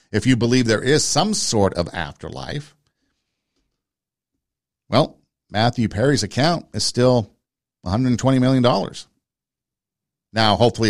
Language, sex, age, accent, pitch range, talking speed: English, male, 50-69, American, 95-125 Hz, 105 wpm